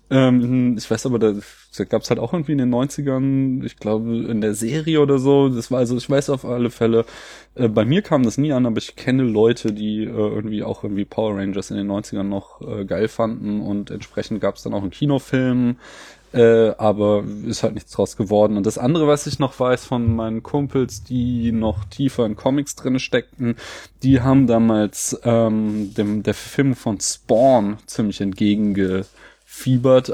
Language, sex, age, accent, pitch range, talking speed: German, male, 20-39, German, 105-130 Hz, 185 wpm